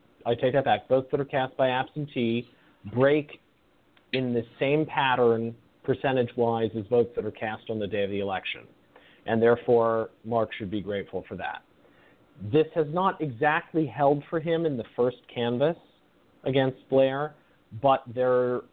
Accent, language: American, English